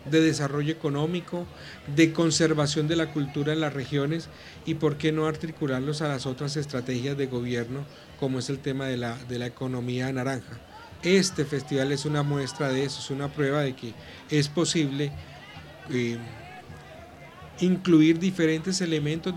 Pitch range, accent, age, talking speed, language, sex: 135-160 Hz, Colombian, 40-59, 150 wpm, Spanish, male